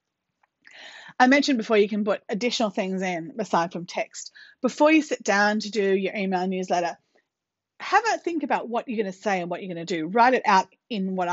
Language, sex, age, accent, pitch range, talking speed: English, female, 30-49, Australian, 185-240 Hz, 215 wpm